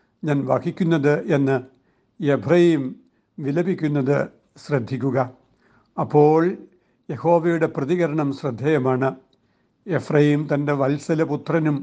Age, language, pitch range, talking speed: 60-79, Malayalam, 140-165 Hz, 65 wpm